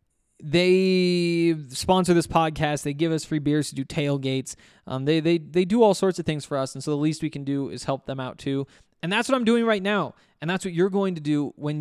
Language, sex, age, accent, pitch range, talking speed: English, male, 20-39, American, 135-170 Hz, 255 wpm